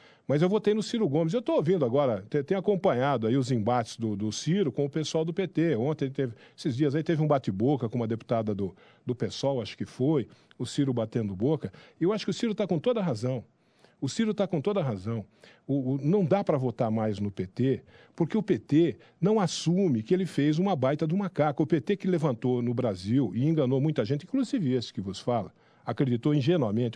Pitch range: 125-200 Hz